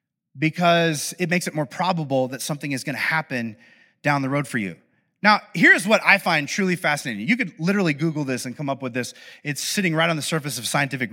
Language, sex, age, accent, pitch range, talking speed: English, male, 30-49, American, 165-230 Hz, 220 wpm